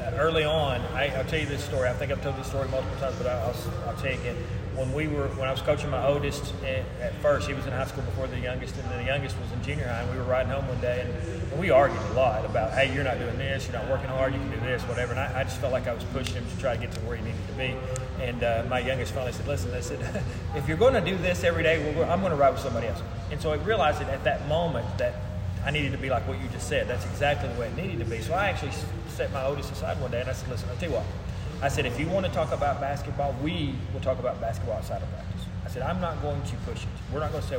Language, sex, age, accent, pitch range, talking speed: English, male, 30-49, American, 100-130 Hz, 315 wpm